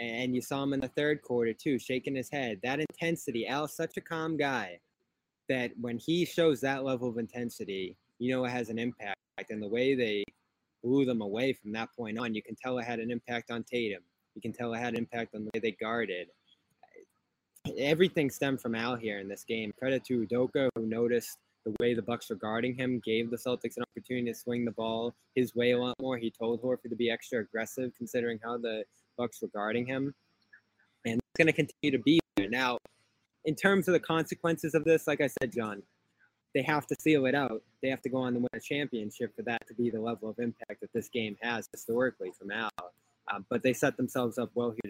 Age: 20-39